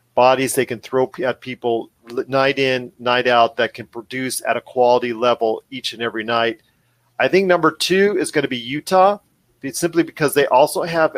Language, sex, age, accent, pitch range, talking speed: English, male, 40-59, American, 125-145 Hz, 185 wpm